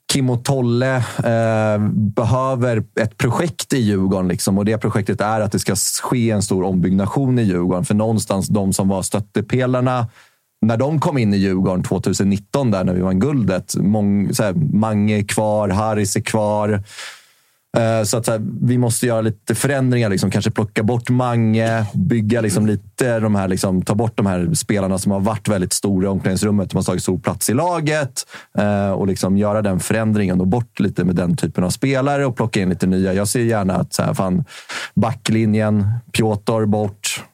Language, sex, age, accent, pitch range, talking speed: Swedish, male, 30-49, native, 100-115 Hz, 180 wpm